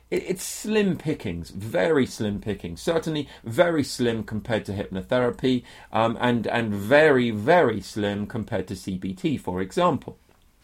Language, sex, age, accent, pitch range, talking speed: English, male, 30-49, British, 105-140 Hz, 130 wpm